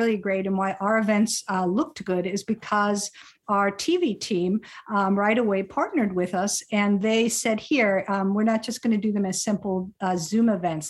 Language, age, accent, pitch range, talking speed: English, 50-69, American, 190-230 Hz, 205 wpm